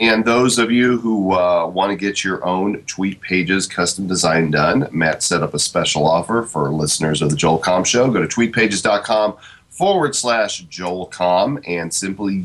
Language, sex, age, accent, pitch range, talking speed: English, male, 30-49, American, 85-110 Hz, 185 wpm